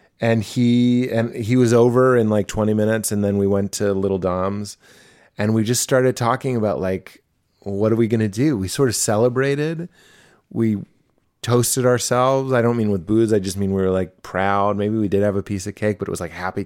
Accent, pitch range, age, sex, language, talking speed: American, 100-130 Hz, 30-49, male, English, 225 wpm